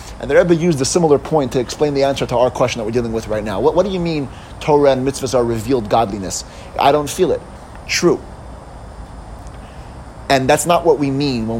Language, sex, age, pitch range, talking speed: English, male, 30-49, 110-150 Hz, 220 wpm